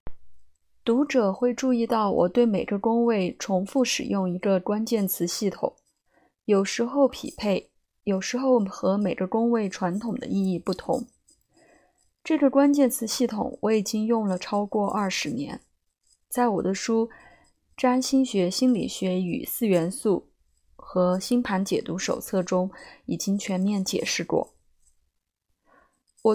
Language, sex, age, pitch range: Chinese, female, 20-39, 185-240 Hz